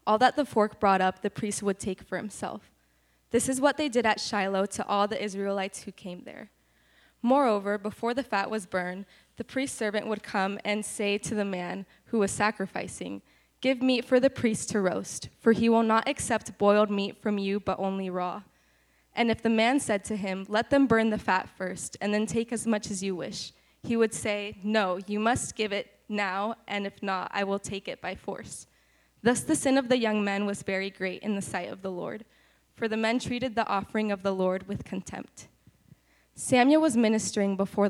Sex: female